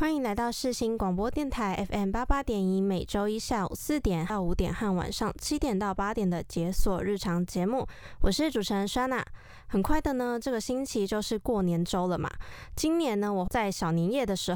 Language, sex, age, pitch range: Chinese, female, 20-39, 185-240 Hz